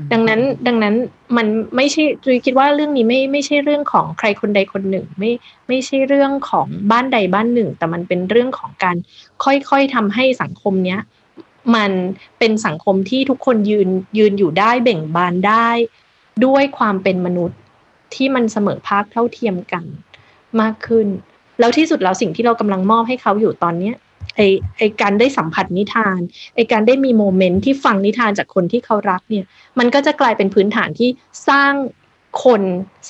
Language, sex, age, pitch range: Thai, female, 20-39, 195-250 Hz